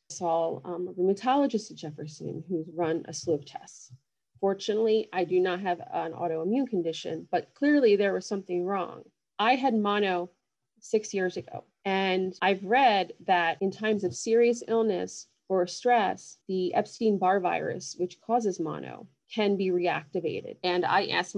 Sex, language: female, English